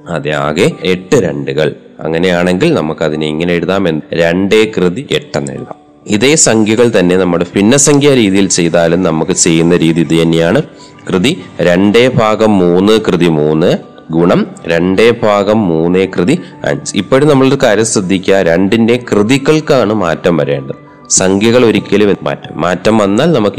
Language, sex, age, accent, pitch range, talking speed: Malayalam, male, 30-49, native, 85-105 Hz, 130 wpm